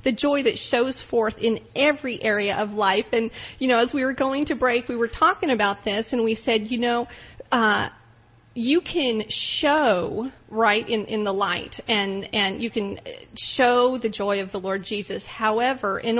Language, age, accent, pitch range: English, 40-59, American, 210-260 Hz